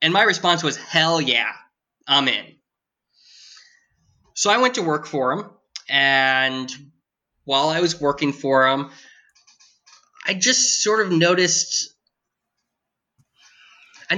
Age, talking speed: 20-39, 120 wpm